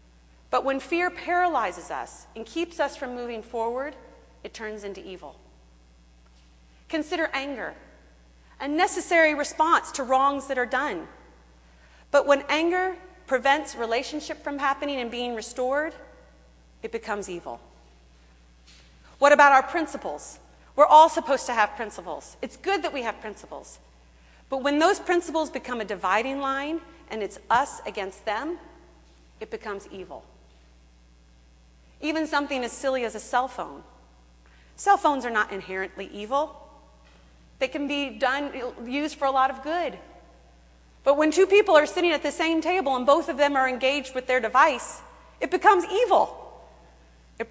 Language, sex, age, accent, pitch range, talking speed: English, female, 40-59, American, 175-295 Hz, 150 wpm